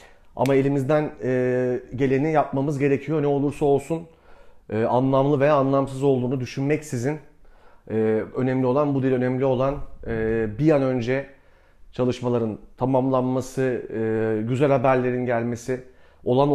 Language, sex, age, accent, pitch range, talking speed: Turkish, male, 40-59, native, 120-145 Hz, 120 wpm